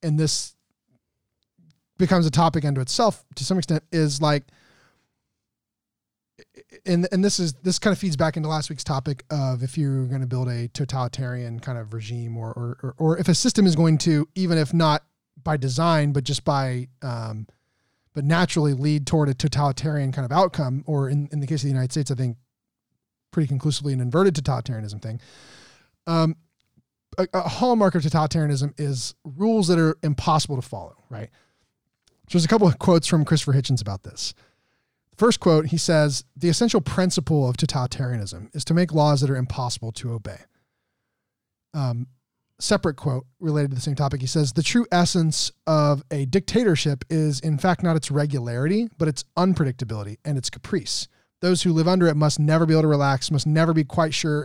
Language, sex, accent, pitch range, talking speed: English, male, American, 130-165 Hz, 185 wpm